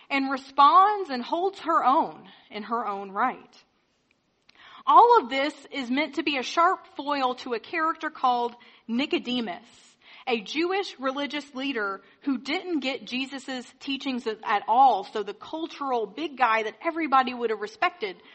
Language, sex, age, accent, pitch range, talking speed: English, female, 30-49, American, 220-310 Hz, 150 wpm